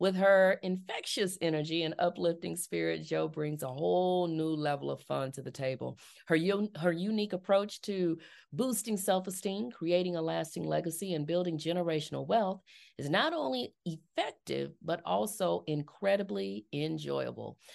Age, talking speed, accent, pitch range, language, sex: 40-59, 140 wpm, American, 150-190 Hz, English, female